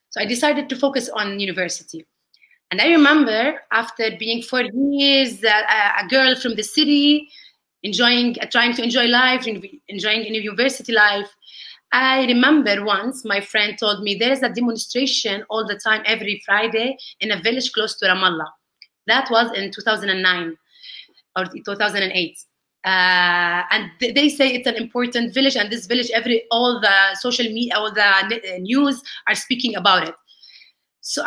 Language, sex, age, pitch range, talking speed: English, female, 30-49, 205-265 Hz, 155 wpm